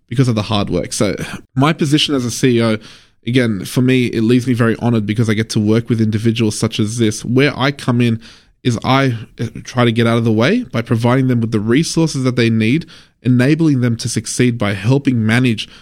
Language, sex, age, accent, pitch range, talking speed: English, male, 20-39, Australian, 110-125 Hz, 220 wpm